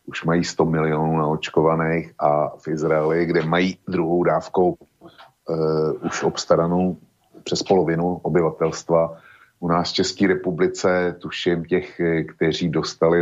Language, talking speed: Slovak, 125 wpm